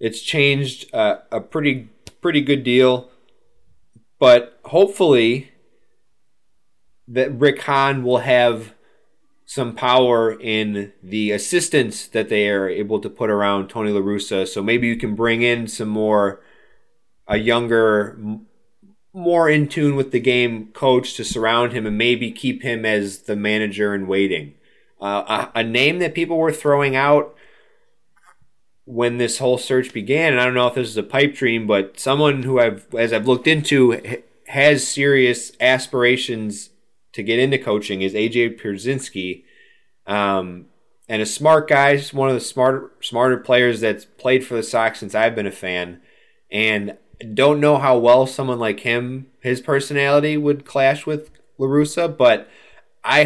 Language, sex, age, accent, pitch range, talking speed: English, male, 30-49, American, 110-140 Hz, 155 wpm